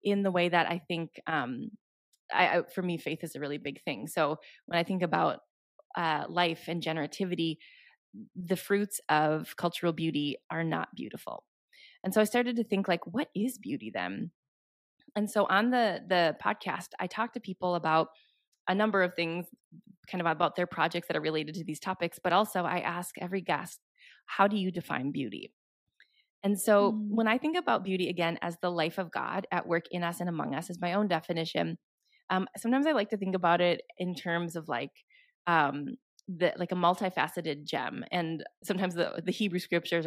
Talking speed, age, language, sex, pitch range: 195 wpm, 20-39, English, female, 165-205 Hz